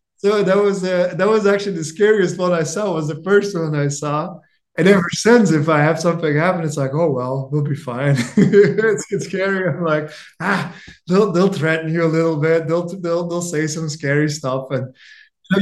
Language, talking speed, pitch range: English, 215 wpm, 140-180 Hz